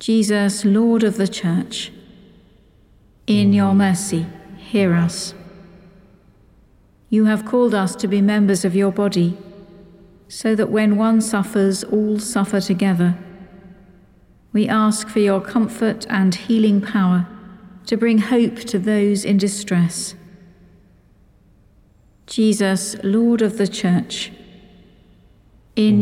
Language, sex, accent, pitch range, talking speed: English, female, British, 185-210 Hz, 115 wpm